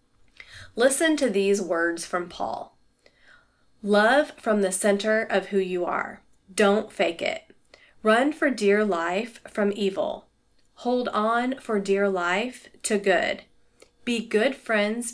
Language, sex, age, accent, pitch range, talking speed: English, female, 30-49, American, 195-230 Hz, 130 wpm